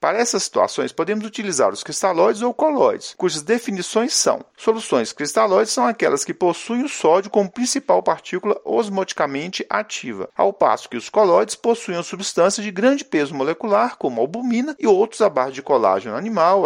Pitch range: 180-230 Hz